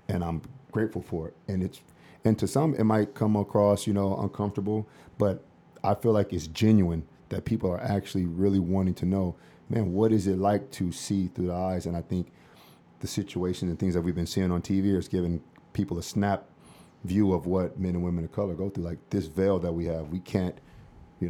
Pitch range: 85-100 Hz